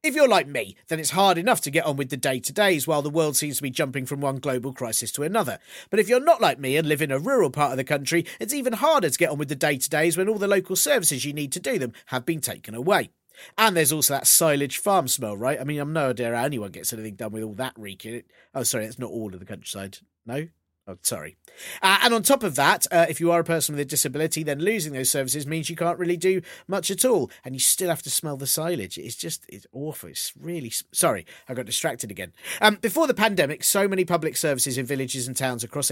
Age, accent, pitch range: 40-59, British, 130-185 Hz